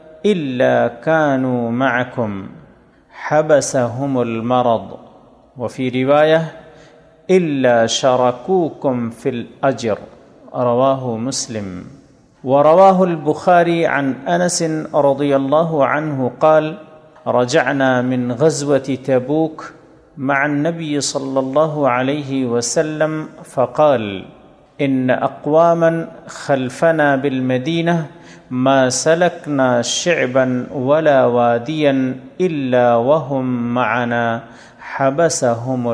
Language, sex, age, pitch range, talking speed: Urdu, male, 40-59, 125-155 Hz, 75 wpm